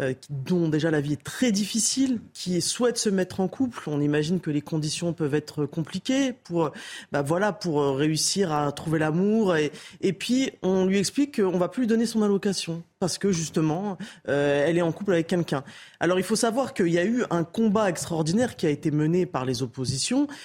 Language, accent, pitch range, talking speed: French, French, 150-210 Hz, 210 wpm